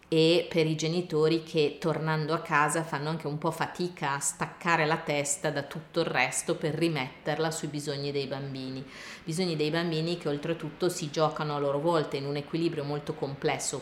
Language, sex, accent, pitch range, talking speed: Italian, female, native, 145-165 Hz, 180 wpm